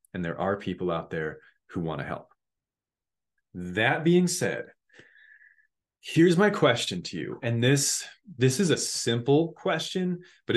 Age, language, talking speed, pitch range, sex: 30-49, English, 150 wpm, 100-150 Hz, male